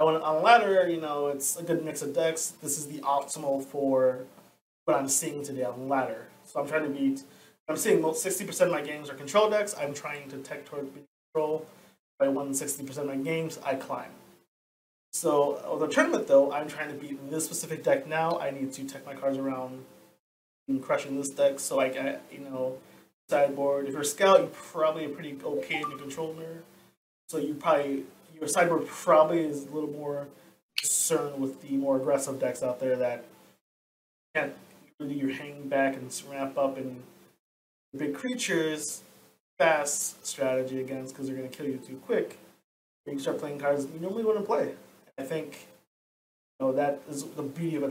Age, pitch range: 20-39, 135-160 Hz